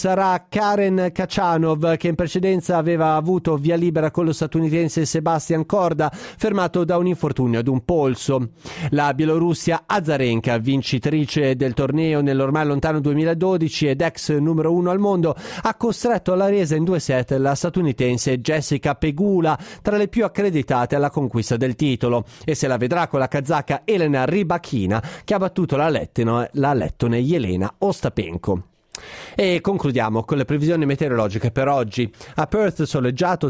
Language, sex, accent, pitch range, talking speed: Italian, male, native, 135-175 Hz, 150 wpm